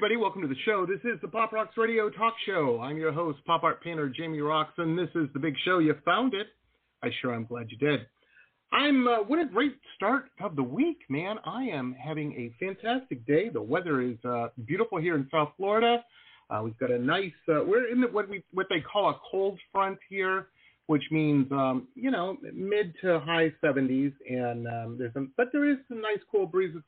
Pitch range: 130-200 Hz